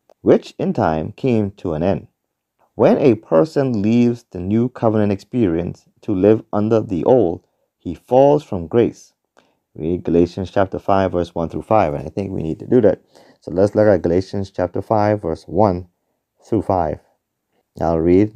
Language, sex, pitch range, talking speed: English, male, 90-130 Hz, 175 wpm